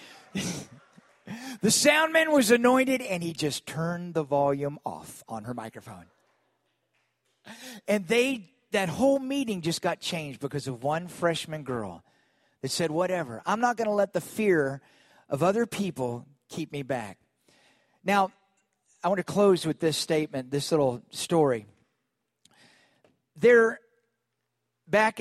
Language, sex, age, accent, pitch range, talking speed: English, male, 50-69, American, 150-195 Hz, 135 wpm